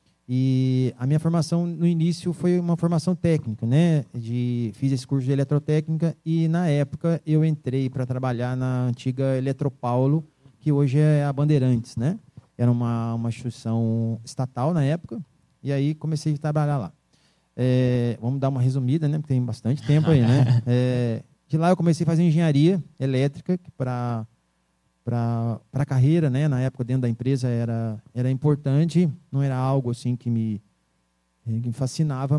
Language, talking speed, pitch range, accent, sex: Portuguese, 165 wpm, 125-150 Hz, Brazilian, male